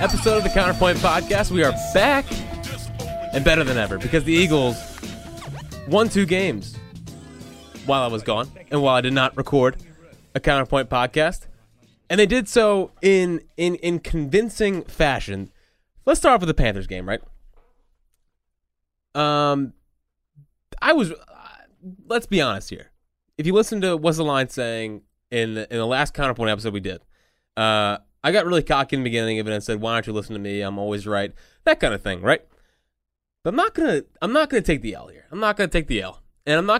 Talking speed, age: 195 wpm, 20-39